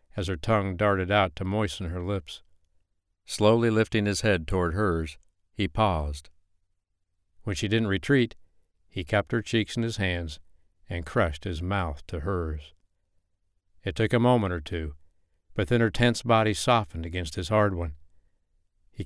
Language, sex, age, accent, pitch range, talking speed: English, male, 60-79, American, 85-105 Hz, 160 wpm